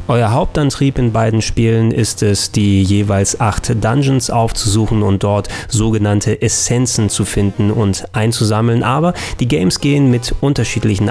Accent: German